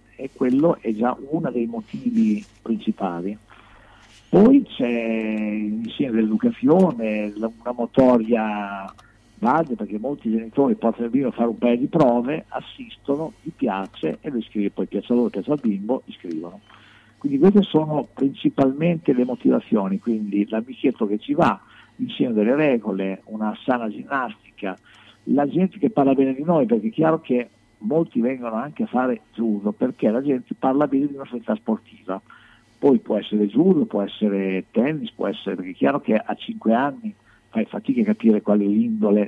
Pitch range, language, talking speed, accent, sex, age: 105-145 Hz, Italian, 165 wpm, native, male, 50-69